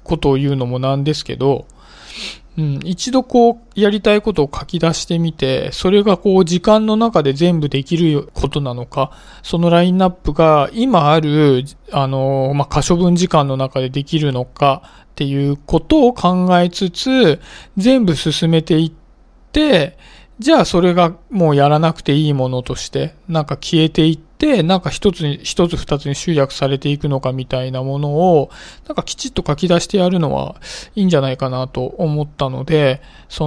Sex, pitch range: male, 140-175 Hz